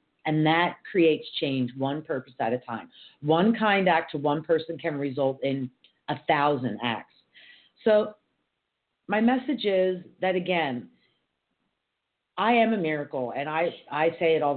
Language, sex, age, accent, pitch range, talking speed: English, female, 40-59, American, 130-165 Hz, 150 wpm